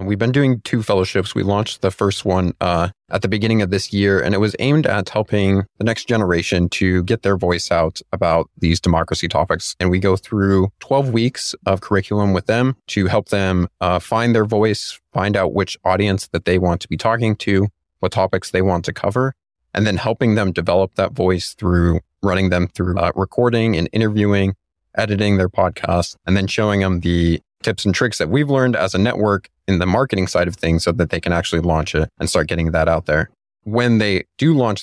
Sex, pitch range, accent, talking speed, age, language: male, 85-105 Hz, American, 215 wpm, 30-49, English